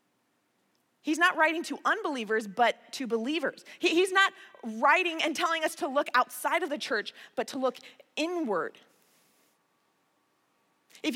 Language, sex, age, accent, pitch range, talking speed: English, female, 20-39, American, 240-325 Hz, 135 wpm